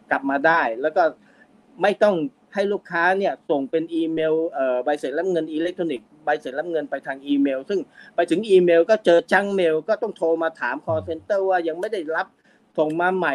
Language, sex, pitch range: Thai, male, 145-190 Hz